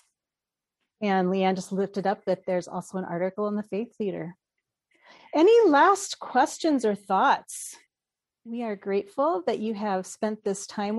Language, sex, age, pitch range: English, female, 40-59, 195-240 Hz